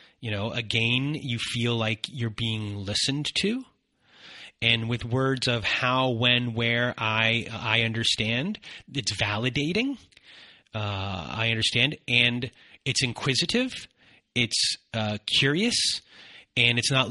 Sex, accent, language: male, American, English